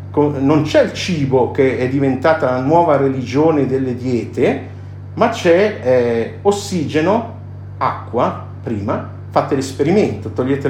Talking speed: 120 wpm